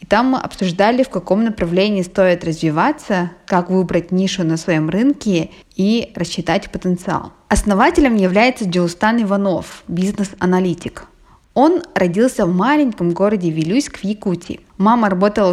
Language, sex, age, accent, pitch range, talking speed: Russian, female, 20-39, native, 175-220 Hz, 125 wpm